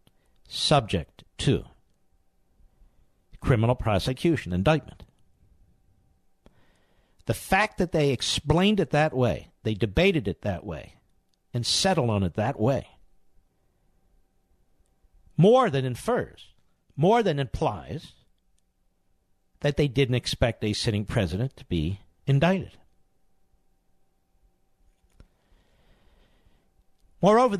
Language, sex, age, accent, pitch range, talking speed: English, male, 60-79, American, 100-160 Hz, 90 wpm